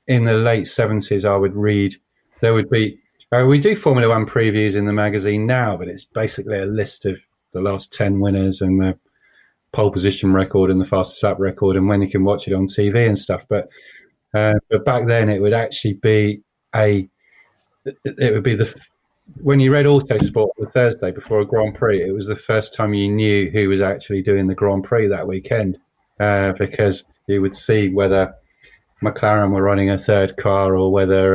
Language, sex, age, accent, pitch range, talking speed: English, male, 30-49, British, 100-130 Hz, 200 wpm